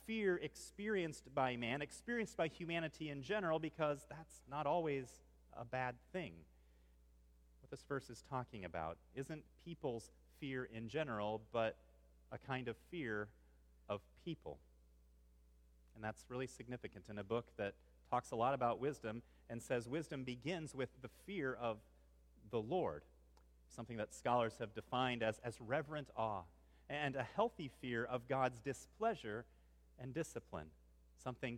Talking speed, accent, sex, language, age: 145 wpm, American, male, English, 30-49